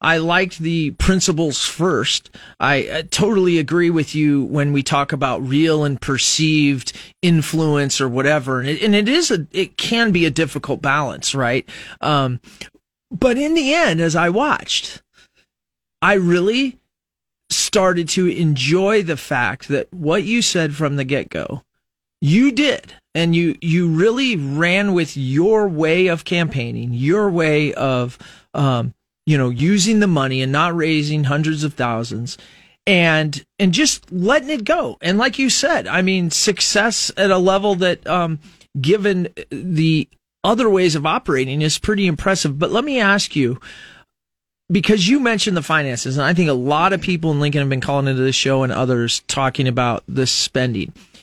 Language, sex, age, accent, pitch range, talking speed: English, male, 30-49, American, 140-195 Hz, 165 wpm